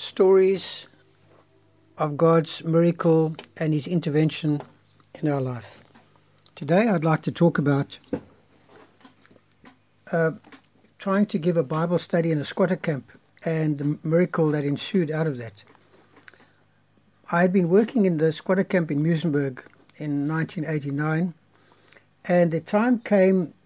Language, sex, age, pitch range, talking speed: English, male, 60-79, 150-180 Hz, 130 wpm